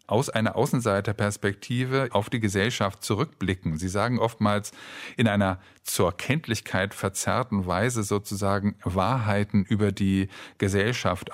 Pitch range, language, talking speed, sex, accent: 100-115 Hz, German, 110 wpm, male, German